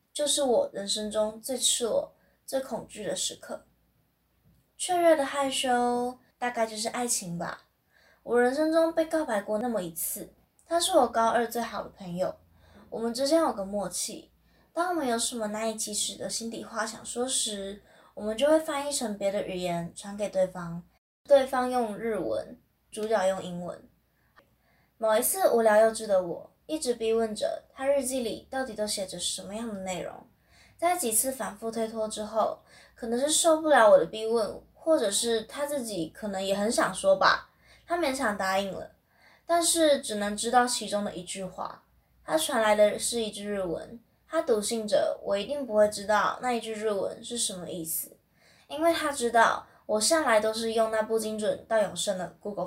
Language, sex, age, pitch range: Chinese, female, 10-29, 205-265 Hz